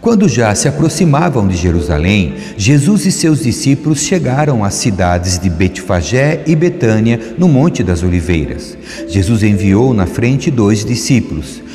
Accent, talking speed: Brazilian, 140 wpm